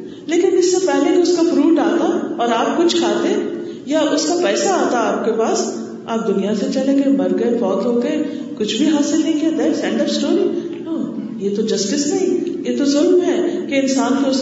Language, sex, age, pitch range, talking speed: Urdu, female, 40-59, 200-315 Hz, 195 wpm